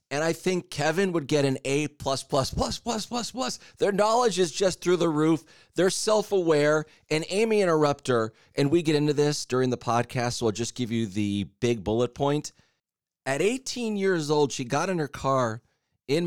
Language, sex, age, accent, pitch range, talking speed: English, male, 30-49, American, 125-185 Hz, 200 wpm